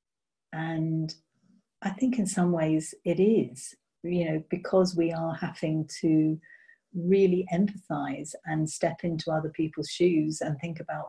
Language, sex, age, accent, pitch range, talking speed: English, female, 50-69, British, 150-175 Hz, 140 wpm